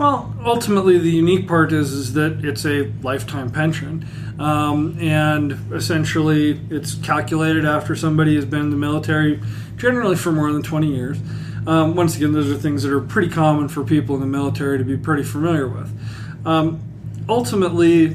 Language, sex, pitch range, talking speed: English, male, 140-165 Hz, 170 wpm